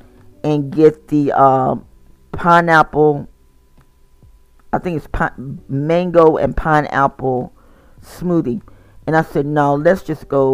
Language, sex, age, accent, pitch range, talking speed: English, female, 40-59, American, 120-165 Hz, 115 wpm